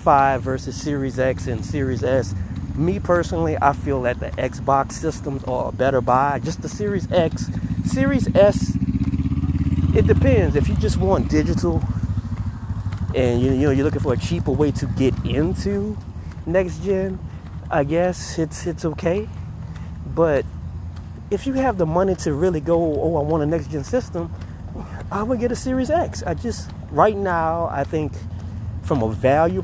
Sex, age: male, 30-49